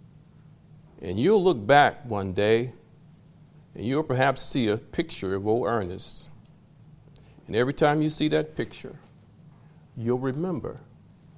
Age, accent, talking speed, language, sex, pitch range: 50-69, American, 125 wpm, English, male, 115-175 Hz